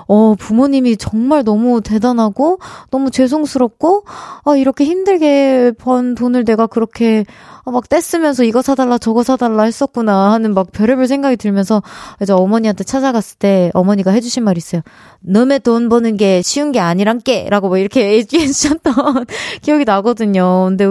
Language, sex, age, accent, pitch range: Korean, female, 20-39, native, 200-270 Hz